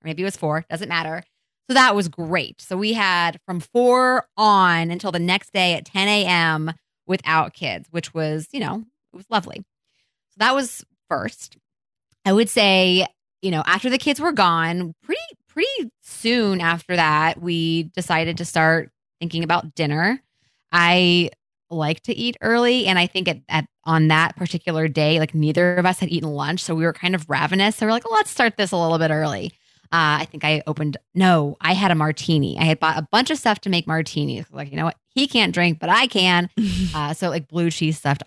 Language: English